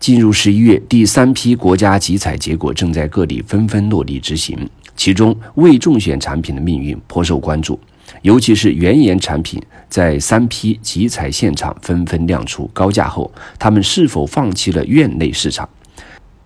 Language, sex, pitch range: Chinese, male, 80-105 Hz